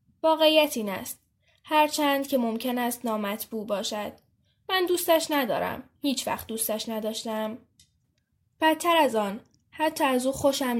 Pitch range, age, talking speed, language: 225-305 Hz, 10-29, 135 wpm, Persian